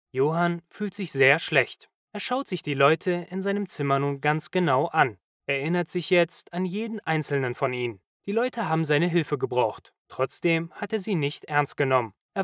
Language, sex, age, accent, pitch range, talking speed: German, male, 20-39, German, 145-200 Hz, 195 wpm